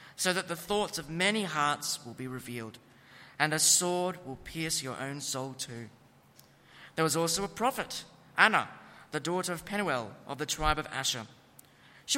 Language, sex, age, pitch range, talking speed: English, male, 40-59, 135-180 Hz, 170 wpm